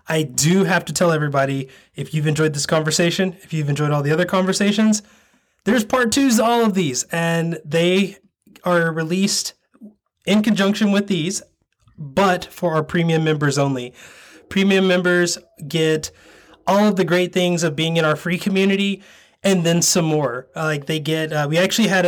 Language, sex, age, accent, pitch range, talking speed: English, male, 20-39, American, 145-185 Hz, 175 wpm